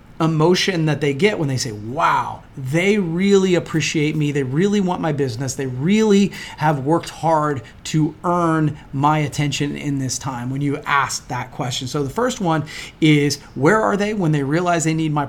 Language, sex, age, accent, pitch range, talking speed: English, male, 30-49, American, 140-180 Hz, 190 wpm